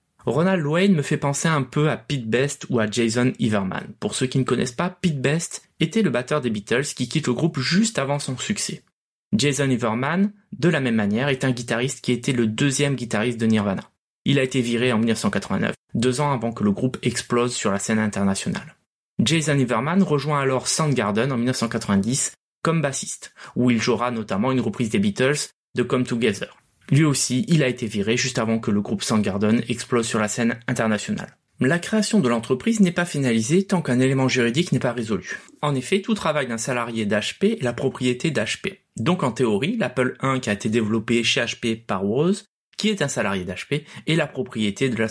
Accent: French